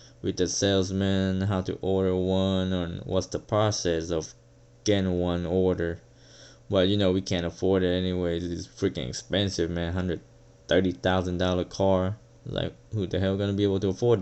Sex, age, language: male, 20-39, English